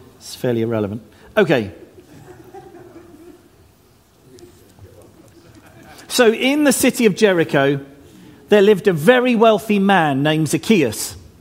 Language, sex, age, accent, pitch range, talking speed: English, male, 40-59, British, 140-215 Hz, 95 wpm